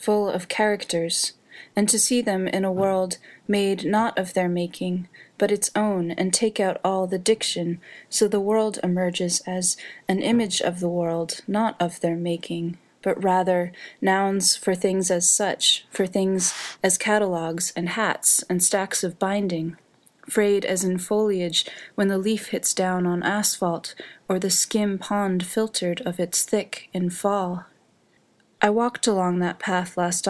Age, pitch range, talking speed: 20-39, 175-200 Hz, 160 wpm